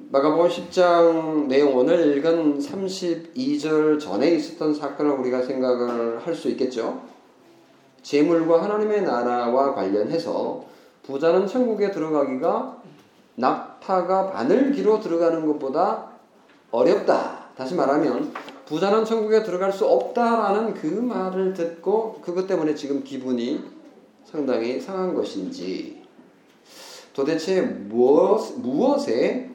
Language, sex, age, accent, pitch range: Korean, male, 40-59, native, 130-205 Hz